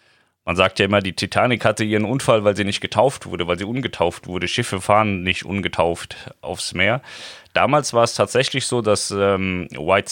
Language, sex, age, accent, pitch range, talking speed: German, male, 30-49, German, 95-115 Hz, 190 wpm